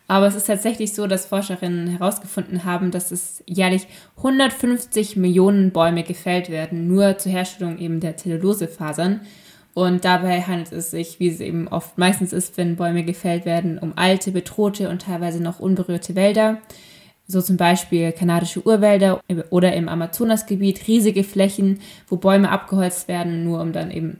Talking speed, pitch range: 160 wpm, 170-195 Hz